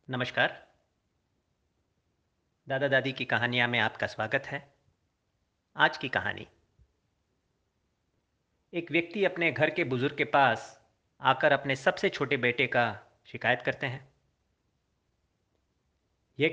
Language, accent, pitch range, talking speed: Hindi, native, 120-150 Hz, 110 wpm